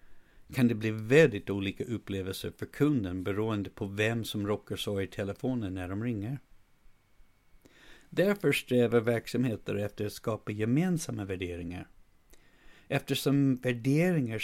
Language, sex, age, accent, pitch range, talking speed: Swedish, male, 60-79, native, 100-130 Hz, 120 wpm